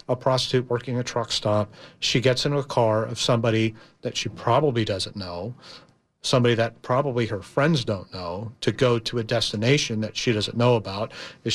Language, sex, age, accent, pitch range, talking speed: English, male, 40-59, American, 110-130 Hz, 185 wpm